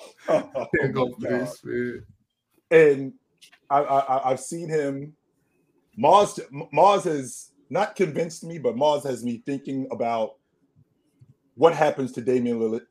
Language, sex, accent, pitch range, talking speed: English, male, American, 125-185 Hz, 110 wpm